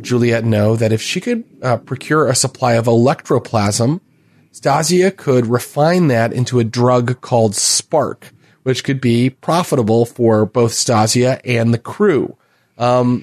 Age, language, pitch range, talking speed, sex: 30-49, English, 125-150 Hz, 145 wpm, male